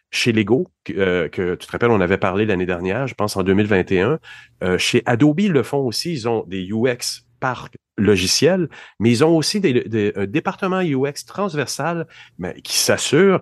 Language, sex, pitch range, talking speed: French, male, 110-145 Hz, 190 wpm